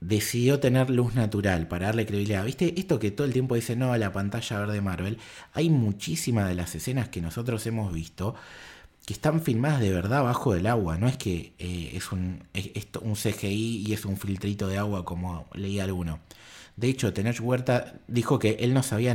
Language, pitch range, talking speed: Spanish, 95-125 Hz, 205 wpm